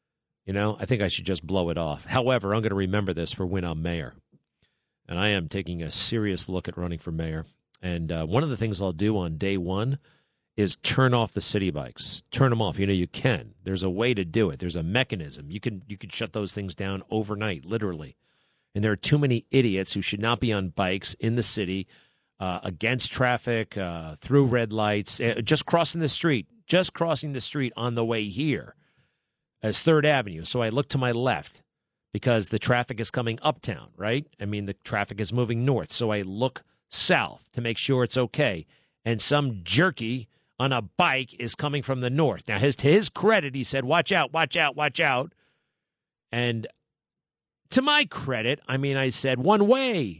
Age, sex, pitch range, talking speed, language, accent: 40-59, male, 100-140 Hz, 205 wpm, English, American